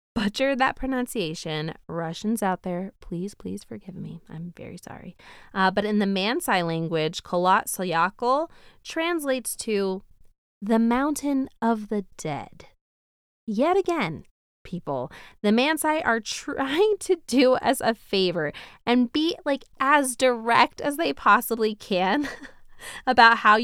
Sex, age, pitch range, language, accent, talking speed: female, 20-39, 175-245 Hz, English, American, 125 wpm